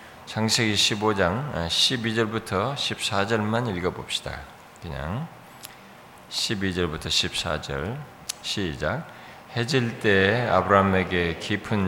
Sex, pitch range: male, 90-110 Hz